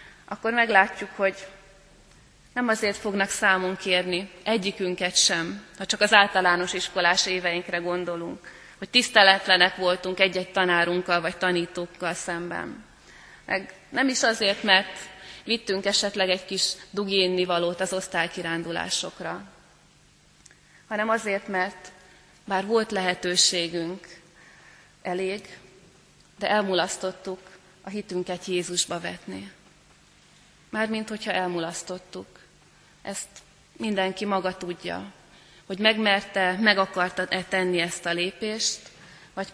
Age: 30-49